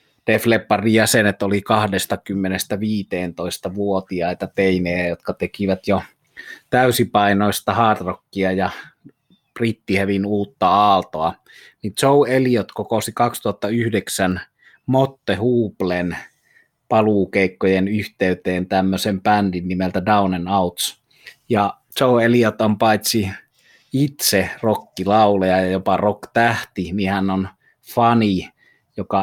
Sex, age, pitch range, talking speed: male, 30-49, 95-110 Hz, 90 wpm